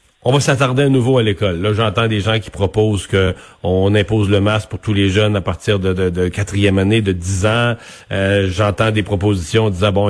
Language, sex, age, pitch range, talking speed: French, male, 40-59, 100-120 Hz, 225 wpm